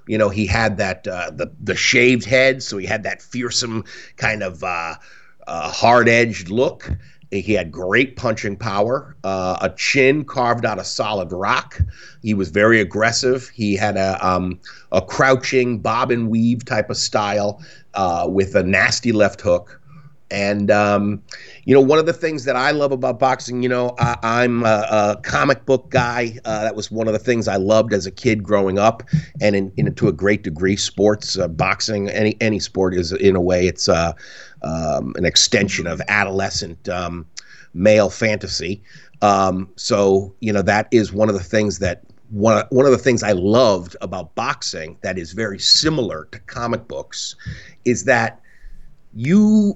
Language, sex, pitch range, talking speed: English, male, 100-125 Hz, 180 wpm